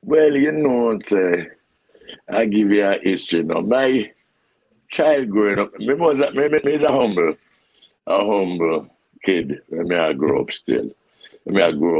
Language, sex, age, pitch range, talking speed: English, male, 60-79, 85-105 Hz, 180 wpm